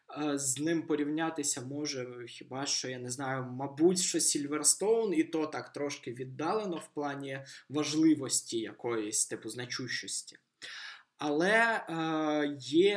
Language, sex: Ukrainian, male